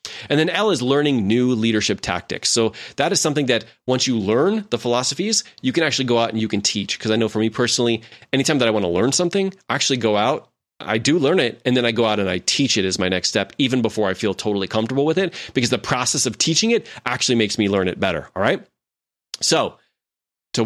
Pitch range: 110-145 Hz